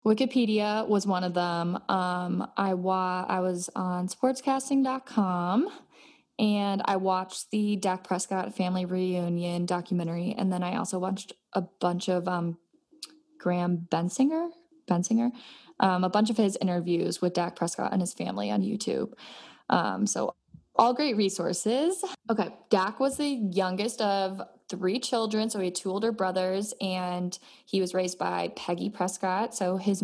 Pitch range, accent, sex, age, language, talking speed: 180-220 Hz, American, female, 20-39, English, 150 wpm